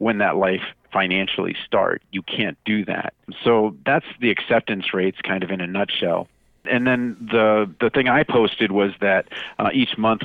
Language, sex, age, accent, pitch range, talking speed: English, male, 40-59, American, 100-115 Hz, 180 wpm